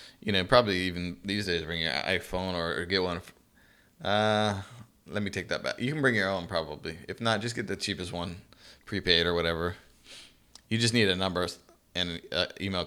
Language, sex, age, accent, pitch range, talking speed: English, male, 20-39, American, 85-100 Hz, 195 wpm